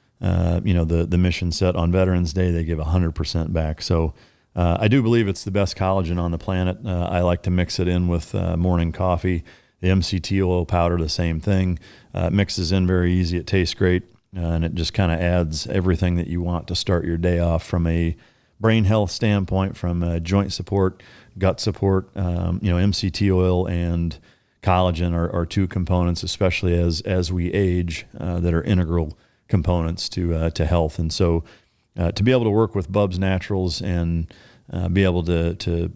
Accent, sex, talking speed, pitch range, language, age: American, male, 200 wpm, 85-95 Hz, English, 40-59